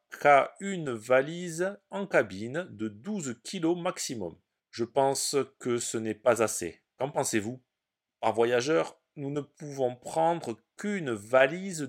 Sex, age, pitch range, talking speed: male, 40-59, 110-150 Hz, 135 wpm